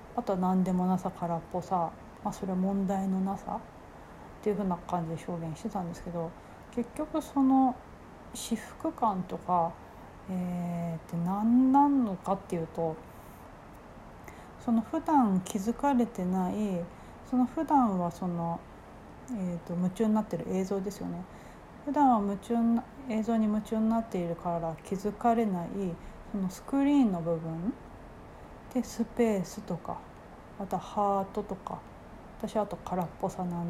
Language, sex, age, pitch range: Japanese, female, 40-59, 175-230 Hz